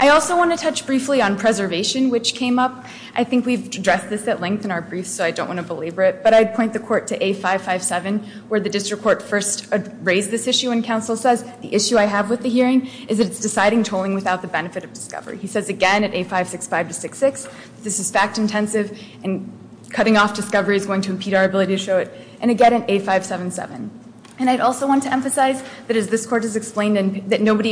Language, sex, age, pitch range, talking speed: English, female, 20-39, 195-240 Hz, 225 wpm